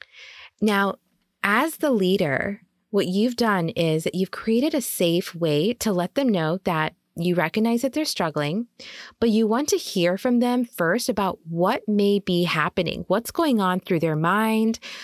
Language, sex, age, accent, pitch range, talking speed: English, female, 20-39, American, 165-220 Hz, 170 wpm